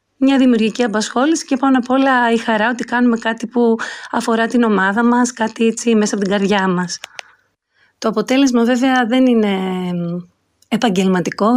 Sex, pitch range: female, 195-240 Hz